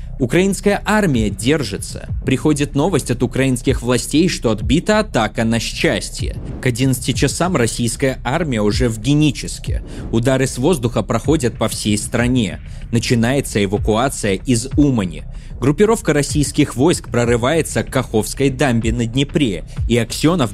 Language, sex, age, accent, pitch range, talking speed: Russian, male, 20-39, native, 110-145 Hz, 125 wpm